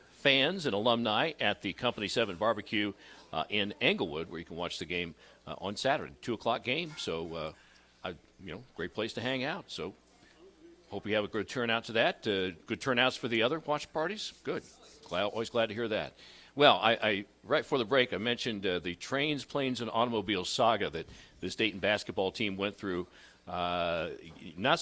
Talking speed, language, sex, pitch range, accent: 200 wpm, English, male, 95-120 Hz, American